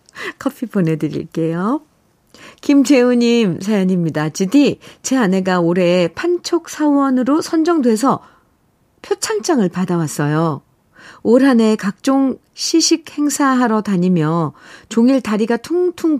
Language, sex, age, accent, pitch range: Korean, female, 50-69, native, 170-235 Hz